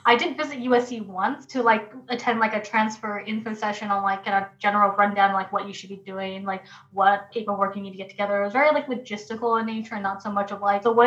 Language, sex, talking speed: English, female, 260 wpm